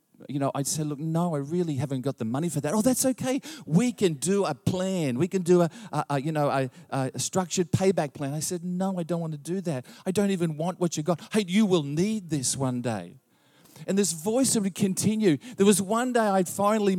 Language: English